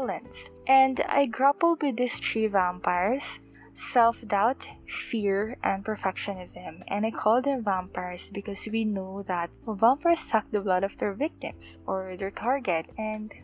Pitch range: 200-245 Hz